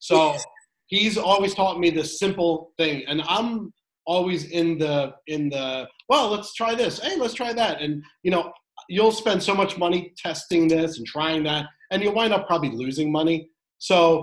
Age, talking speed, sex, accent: 30-49, 185 wpm, male, American